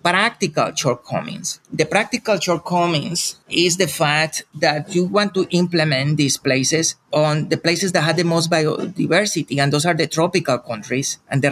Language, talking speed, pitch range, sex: English, 160 wpm, 155-185 Hz, male